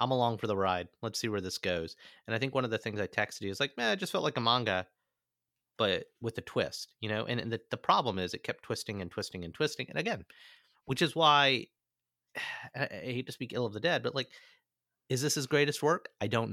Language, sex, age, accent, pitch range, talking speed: English, male, 30-49, American, 100-135 Hz, 255 wpm